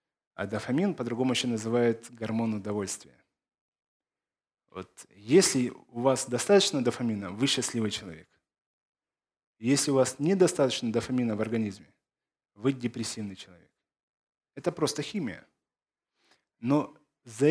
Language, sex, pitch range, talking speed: Ukrainian, male, 115-150 Hz, 105 wpm